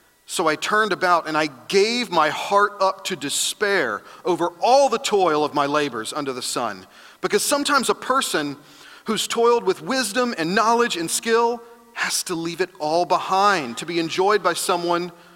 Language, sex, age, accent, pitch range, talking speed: English, male, 40-59, American, 150-190 Hz, 175 wpm